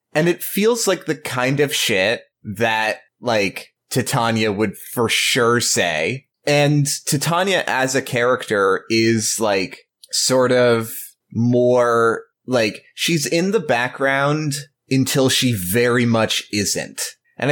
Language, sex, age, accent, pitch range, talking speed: English, male, 20-39, American, 105-130 Hz, 125 wpm